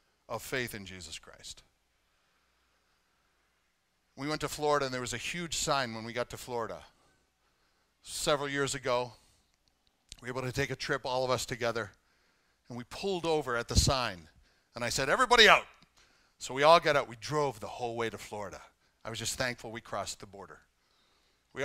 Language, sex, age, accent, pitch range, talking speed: English, male, 50-69, American, 130-200 Hz, 185 wpm